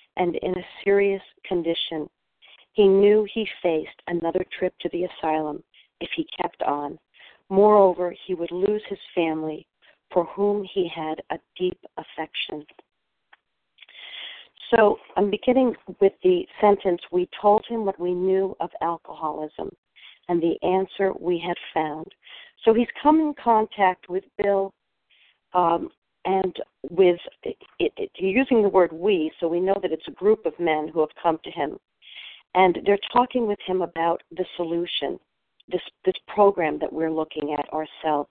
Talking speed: 150 wpm